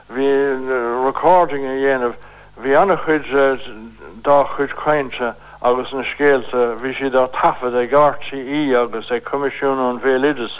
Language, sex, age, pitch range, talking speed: English, male, 60-79, 130-150 Hz, 110 wpm